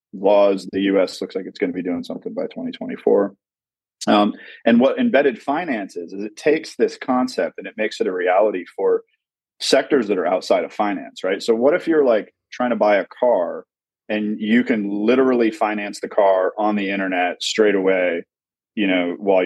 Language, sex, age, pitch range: English, male, 30-49, 95-150 Hz